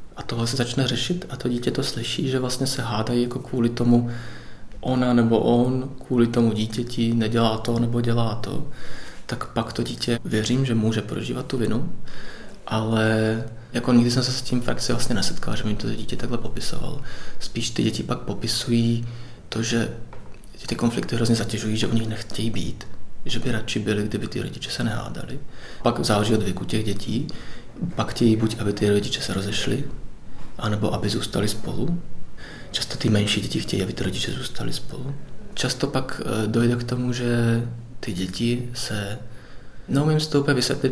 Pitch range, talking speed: 110-125 Hz, 175 wpm